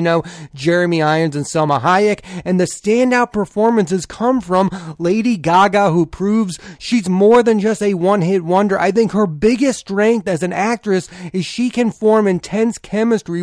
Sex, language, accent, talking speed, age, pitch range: male, English, American, 170 wpm, 30-49, 170-210 Hz